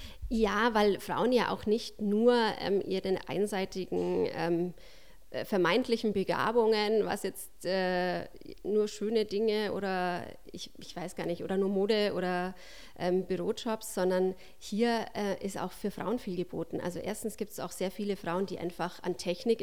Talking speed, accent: 160 wpm, German